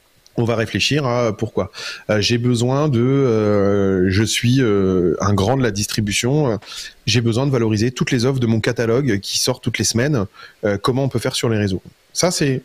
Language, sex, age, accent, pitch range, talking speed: French, male, 30-49, French, 105-150 Hz, 200 wpm